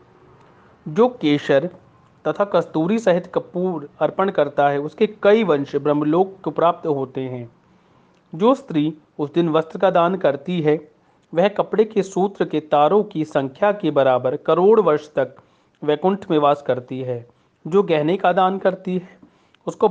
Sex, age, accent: male, 40-59, native